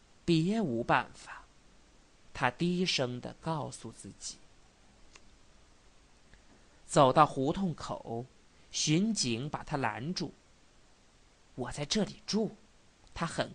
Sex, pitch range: male, 130-205 Hz